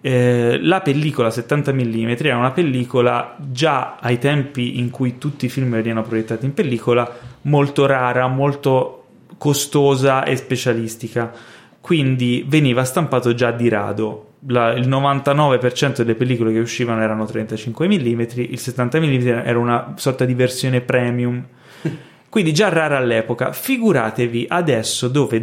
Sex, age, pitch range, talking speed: male, 20-39, 120-145 Hz, 135 wpm